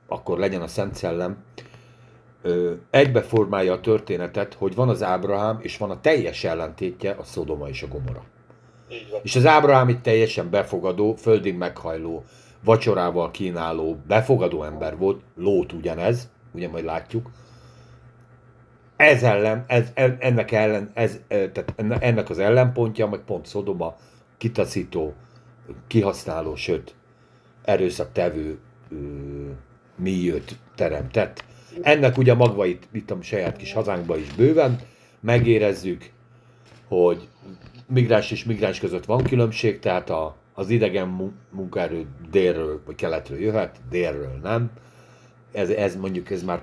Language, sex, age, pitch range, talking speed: Hungarian, male, 60-79, 95-120 Hz, 120 wpm